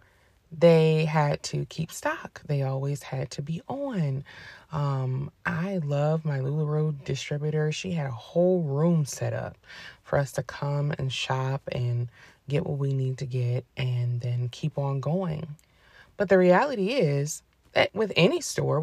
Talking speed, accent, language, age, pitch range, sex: 160 wpm, American, English, 20-39, 135-180 Hz, female